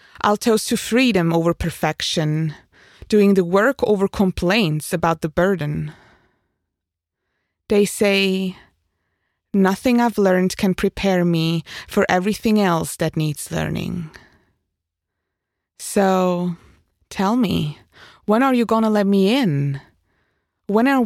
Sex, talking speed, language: female, 115 wpm, English